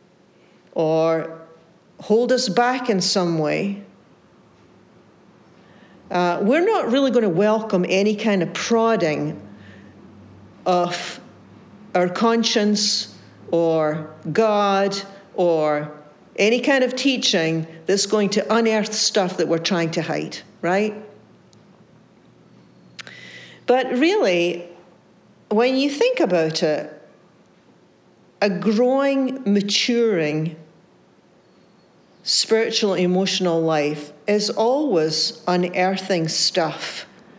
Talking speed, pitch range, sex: 90 wpm, 170-215 Hz, female